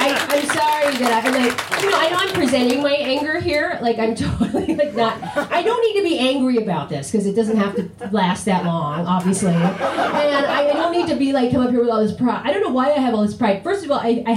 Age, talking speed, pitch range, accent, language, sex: 30-49, 265 wpm, 220-290 Hz, American, English, female